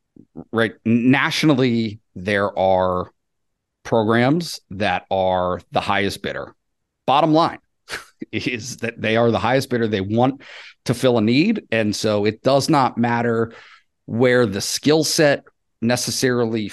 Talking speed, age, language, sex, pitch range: 130 wpm, 40-59, English, male, 105-130 Hz